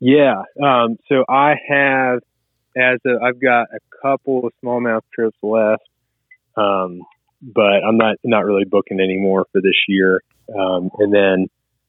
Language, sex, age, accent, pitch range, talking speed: English, male, 30-49, American, 95-125 Hz, 145 wpm